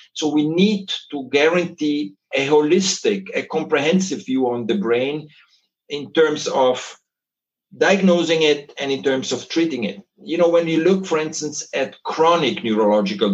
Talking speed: 155 wpm